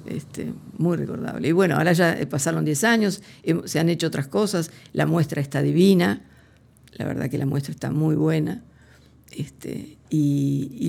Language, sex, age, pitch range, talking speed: Spanish, female, 50-69, 140-170 Hz, 165 wpm